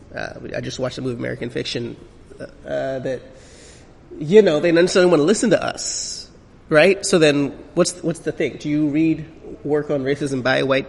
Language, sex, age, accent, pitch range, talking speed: English, male, 30-49, American, 130-165 Hz, 195 wpm